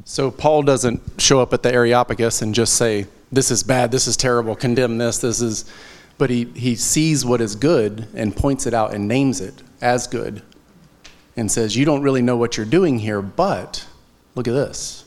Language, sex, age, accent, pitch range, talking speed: English, male, 30-49, American, 110-135 Hz, 205 wpm